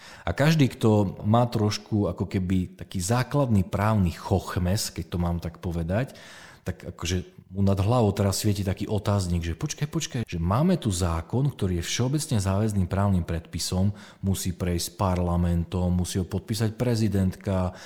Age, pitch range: 40-59, 90-115 Hz